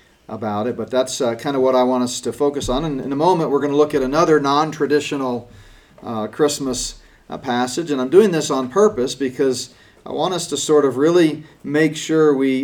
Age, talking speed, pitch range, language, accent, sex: 40-59, 210 wpm, 115-145 Hz, English, American, male